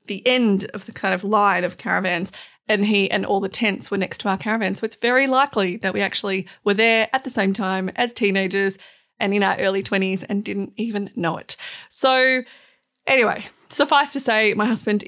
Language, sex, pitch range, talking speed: English, female, 190-225 Hz, 205 wpm